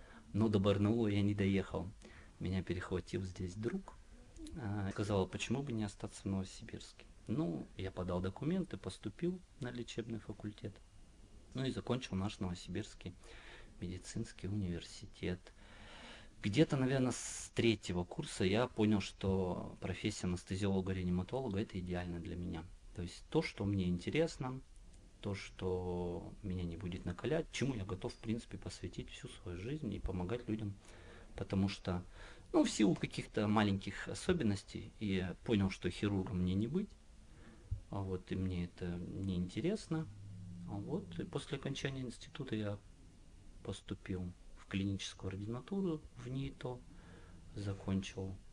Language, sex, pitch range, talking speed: Russian, male, 90-115 Hz, 130 wpm